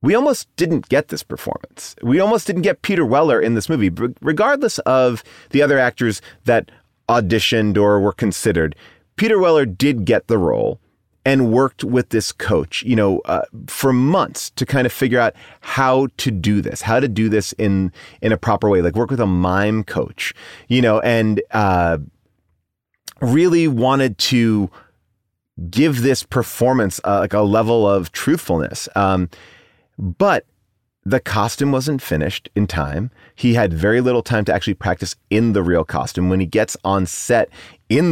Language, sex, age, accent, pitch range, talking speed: English, male, 30-49, American, 95-130 Hz, 165 wpm